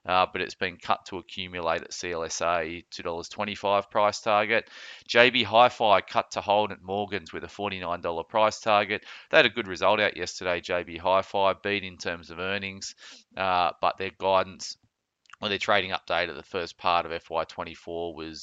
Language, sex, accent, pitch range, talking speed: English, male, Australian, 90-105 Hz, 175 wpm